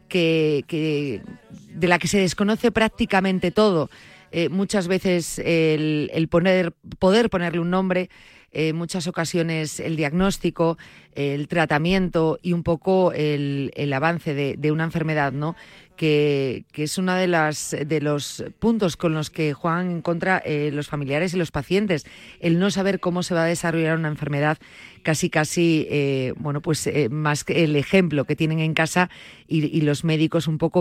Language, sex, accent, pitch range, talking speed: Spanish, female, Spanish, 150-180 Hz, 170 wpm